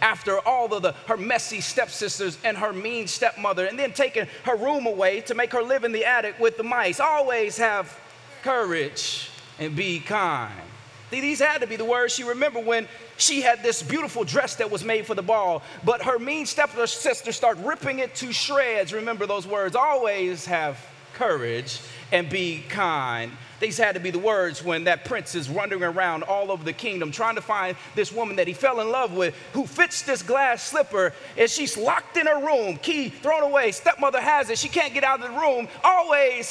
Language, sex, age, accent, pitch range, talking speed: English, male, 30-49, American, 175-255 Hz, 200 wpm